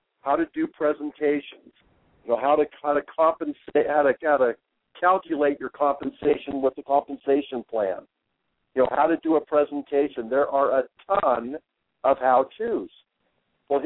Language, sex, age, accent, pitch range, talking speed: English, male, 60-79, American, 140-205 Hz, 155 wpm